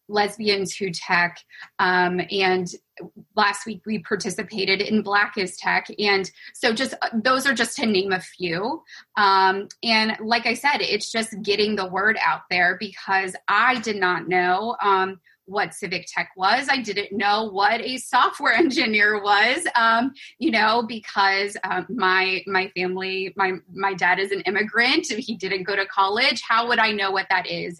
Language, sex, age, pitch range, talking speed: English, female, 20-39, 190-225 Hz, 175 wpm